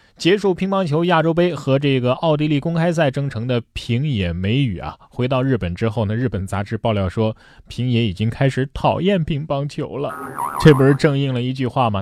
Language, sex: Chinese, male